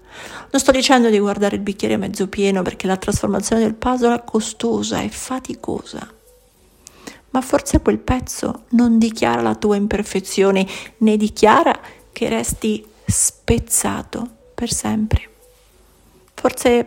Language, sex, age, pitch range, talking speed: Italian, female, 50-69, 205-250 Hz, 130 wpm